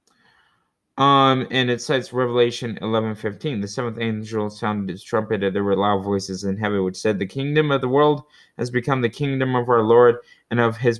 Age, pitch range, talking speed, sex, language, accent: 20-39, 110-140 Hz, 200 wpm, male, English, American